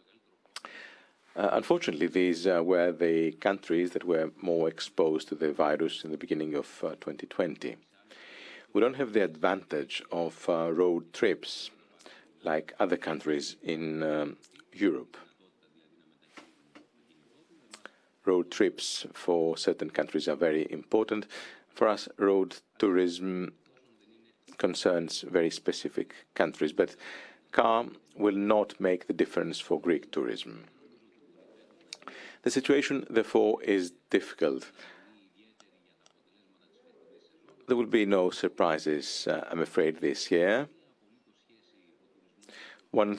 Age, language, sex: 50-69, Greek, male